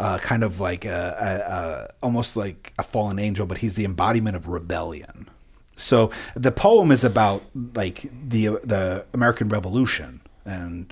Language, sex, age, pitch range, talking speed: English, male, 40-59, 95-120 Hz, 145 wpm